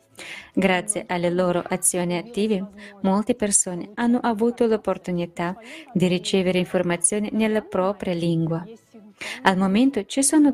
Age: 20-39